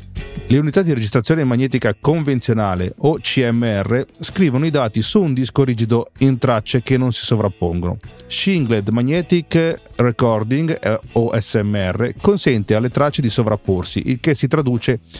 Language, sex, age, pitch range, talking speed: Italian, male, 40-59, 105-135 Hz, 140 wpm